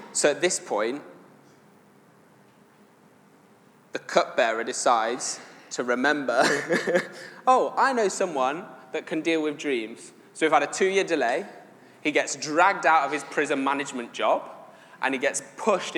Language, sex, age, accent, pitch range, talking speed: English, male, 20-39, British, 135-165 Hz, 140 wpm